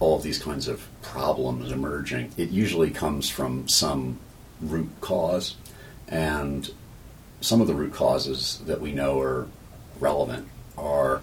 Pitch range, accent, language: 70-80 Hz, American, English